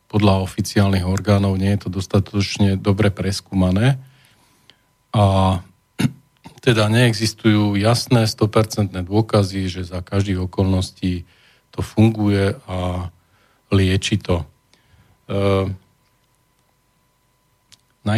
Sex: male